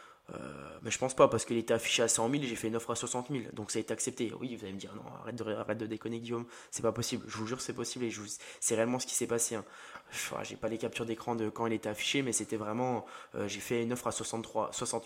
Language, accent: English, French